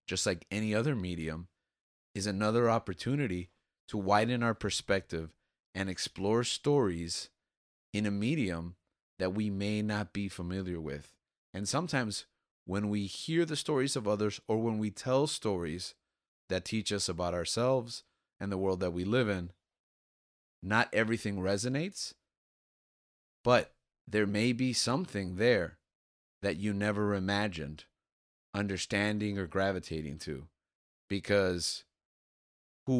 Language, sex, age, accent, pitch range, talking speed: English, male, 30-49, American, 85-105 Hz, 125 wpm